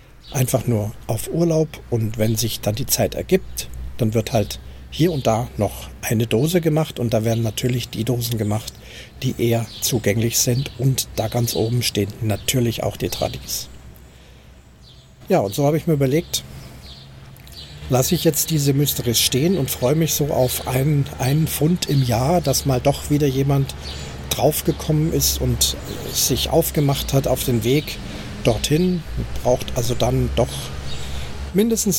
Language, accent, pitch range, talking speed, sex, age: German, German, 105-140 Hz, 160 wpm, male, 50-69